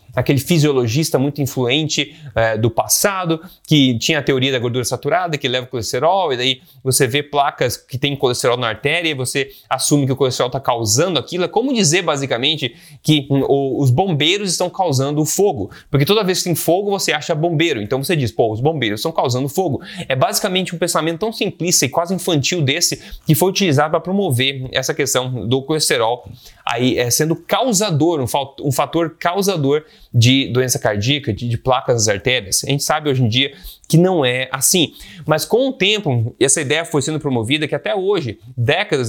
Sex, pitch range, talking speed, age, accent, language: male, 125-165 Hz, 195 wpm, 20-39, Brazilian, Portuguese